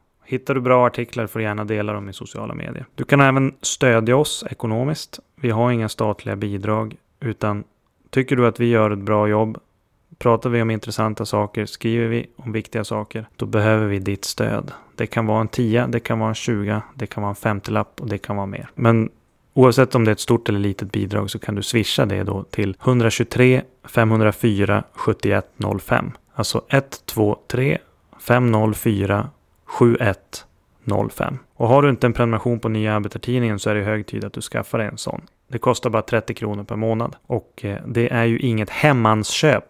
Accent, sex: native, male